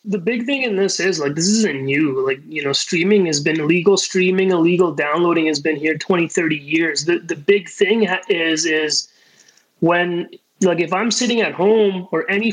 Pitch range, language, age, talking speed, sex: 160-200 Hz, English, 30-49, 195 wpm, male